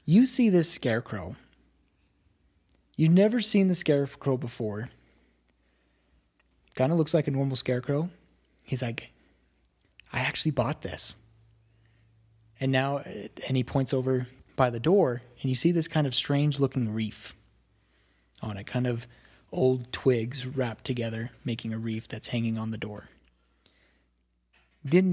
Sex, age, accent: male, 20-39, American